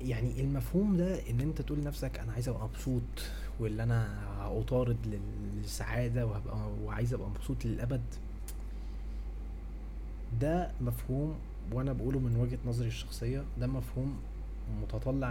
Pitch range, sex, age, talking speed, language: 100-125 Hz, male, 20-39, 120 wpm, Arabic